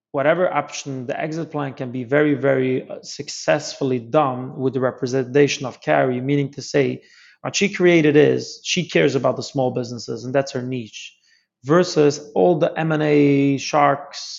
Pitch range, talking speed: 125-145 Hz, 165 wpm